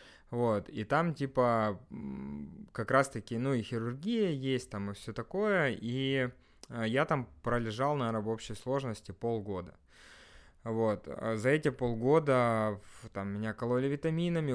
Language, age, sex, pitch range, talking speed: Russian, 20-39, male, 110-140 Hz, 130 wpm